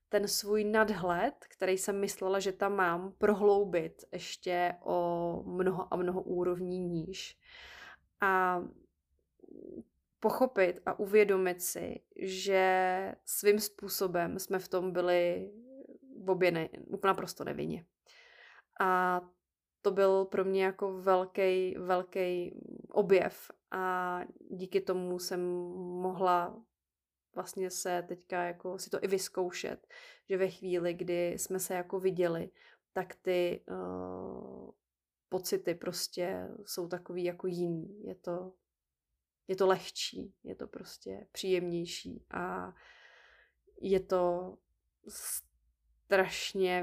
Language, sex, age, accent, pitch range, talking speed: Czech, female, 20-39, native, 175-195 Hz, 105 wpm